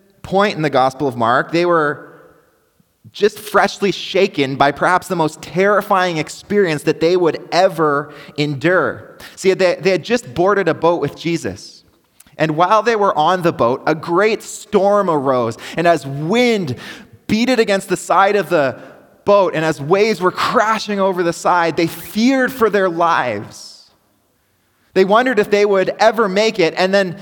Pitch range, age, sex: 150-215 Hz, 20-39, male